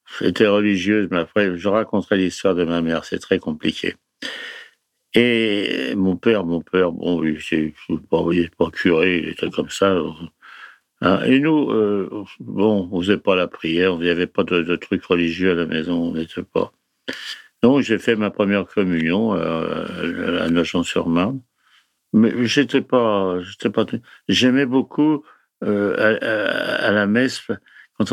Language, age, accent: French, 60-79, French